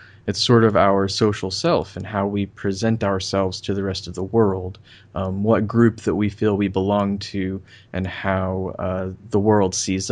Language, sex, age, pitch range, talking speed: English, male, 20-39, 95-115 Hz, 190 wpm